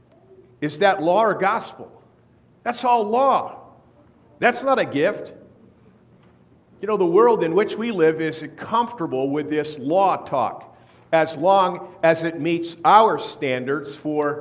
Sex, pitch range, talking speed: male, 150-205 Hz, 140 wpm